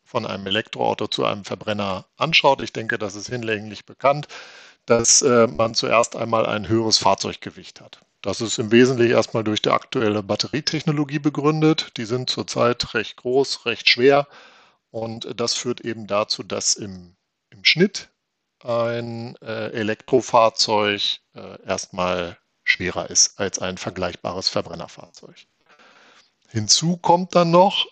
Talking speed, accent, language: 140 wpm, German, German